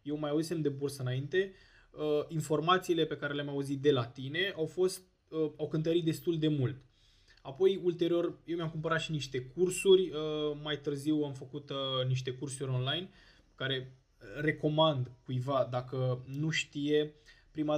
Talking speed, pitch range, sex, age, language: 145 wpm, 130-155 Hz, male, 20-39, Romanian